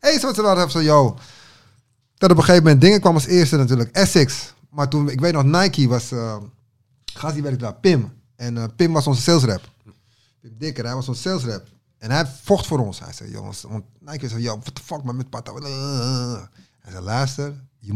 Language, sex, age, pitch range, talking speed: Dutch, male, 30-49, 115-150 Hz, 225 wpm